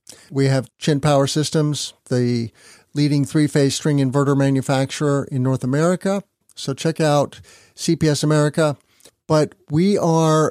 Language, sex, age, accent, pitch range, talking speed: English, male, 50-69, American, 135-160 Hz, 125 wpm